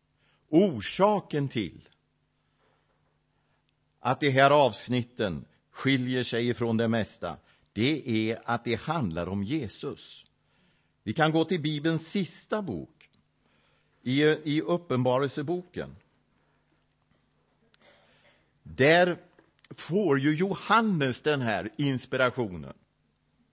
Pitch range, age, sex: 115-150 Hz, 60-79, male